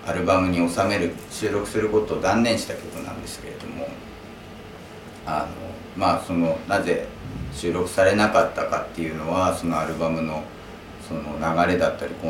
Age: 50-69